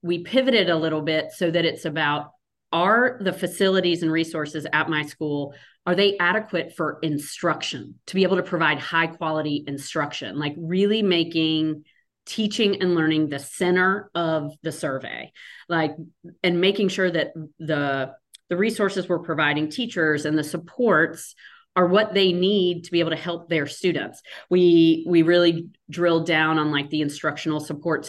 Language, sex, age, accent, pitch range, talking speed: English, female, 40-59, American, 155-185 Hz, 160 wpm